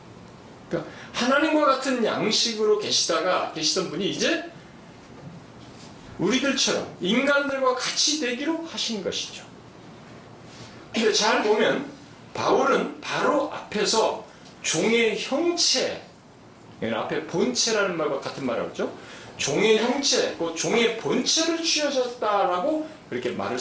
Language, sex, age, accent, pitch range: Korean, male, 40-59, native, 230-320 Hz